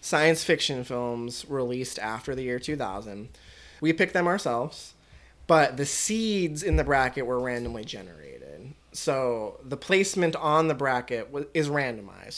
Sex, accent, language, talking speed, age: male, American, English, 140 wpm, 20-39